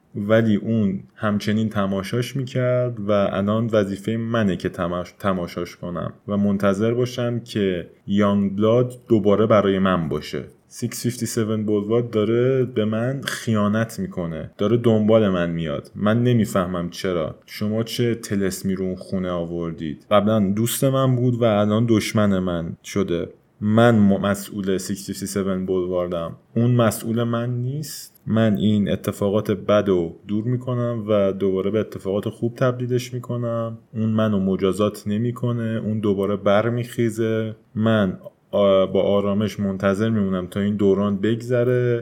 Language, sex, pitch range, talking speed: Persian, male, 95-115 Hz, 125 wpm